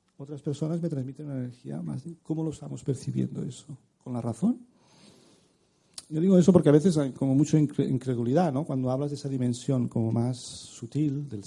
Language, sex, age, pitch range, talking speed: Spanish, male, 40-59, 125-165 Hz, 180 wpm